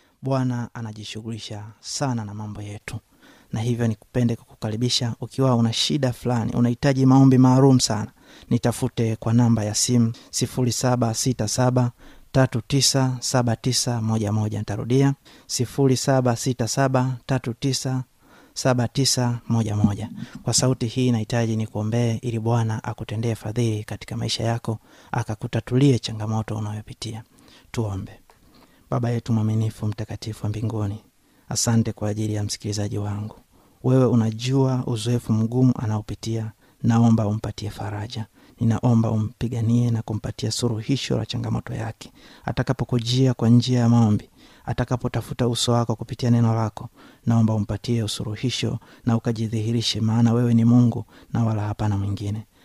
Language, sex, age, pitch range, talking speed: Swahili, male, 30-49, 110-125 Hz, 110 wpm